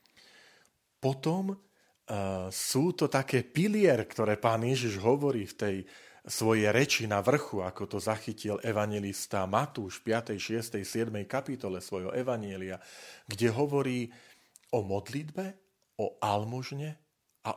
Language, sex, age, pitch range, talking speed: Slovak, male, 40-59, 105-150 Hz, 120 wpm